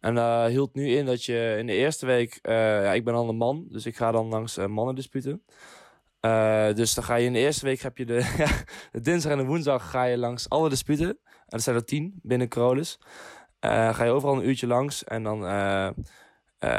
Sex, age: male, 10-29